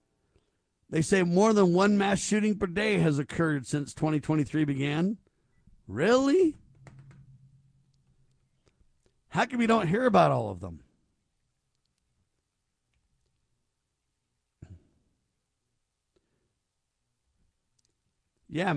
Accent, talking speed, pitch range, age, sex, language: American, 80 wpm, 125-175 Hz, 50-69, male, English